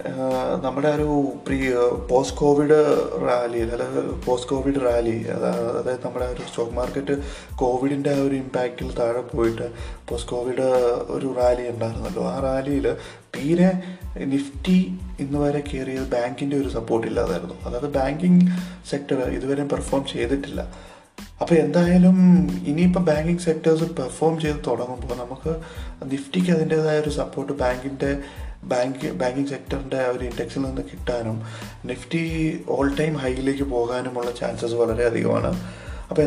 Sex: male